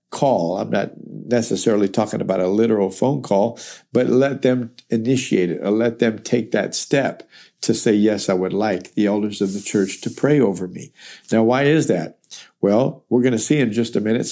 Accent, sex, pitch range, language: American, male, 105-125 Hz, English